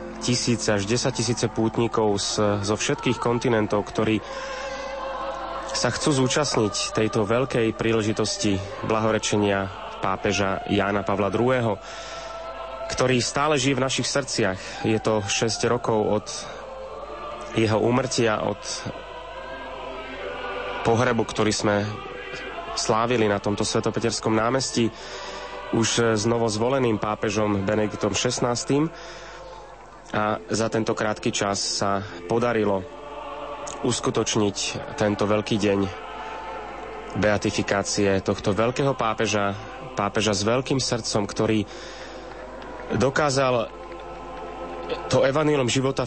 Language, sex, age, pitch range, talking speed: Slovak, male, 30-49, 105-120 Hz, 95 wpm